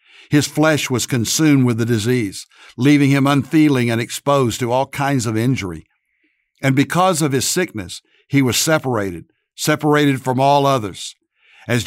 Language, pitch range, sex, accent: English, 120-150 Hz, male, American